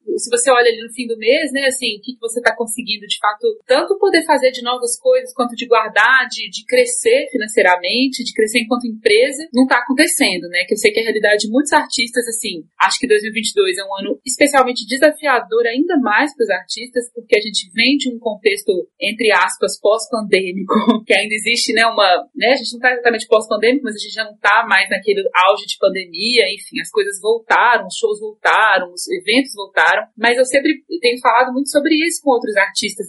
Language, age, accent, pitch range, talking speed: Portuguese, 30-49, Brazilian, 220-285 Hz, 210 wpm